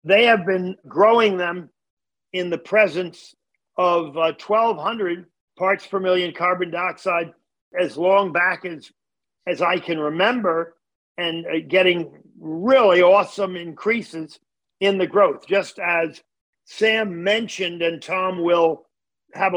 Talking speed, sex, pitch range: 125 wpm, male, 175-205 Hz